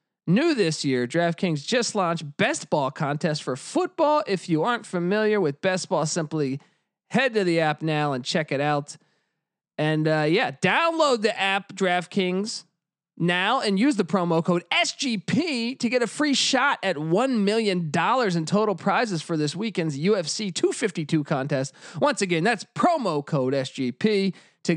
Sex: male